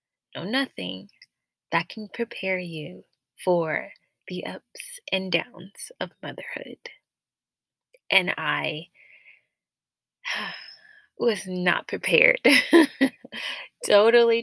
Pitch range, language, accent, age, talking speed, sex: 180-270 Hz, English, American, 20-39, 80 wpm, female